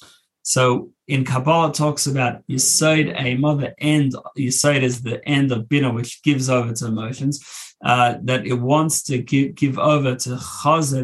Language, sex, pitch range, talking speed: English, male, 125-145 Hz, 185 wpm